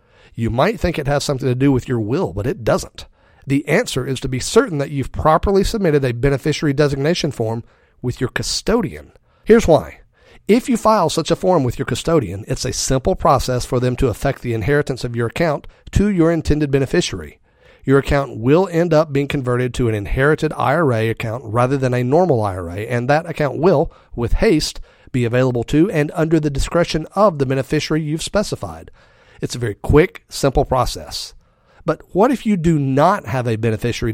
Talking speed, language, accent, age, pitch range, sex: 190 wpm, English, American, 40-59, 120-155 Hz, male